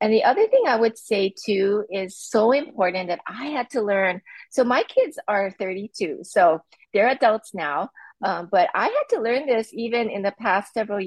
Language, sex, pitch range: English, female, 185-250 Hz